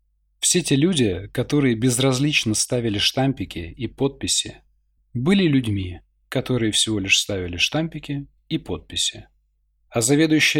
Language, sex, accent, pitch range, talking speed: Russian, male, native, 90-135 Hz, 115 wpm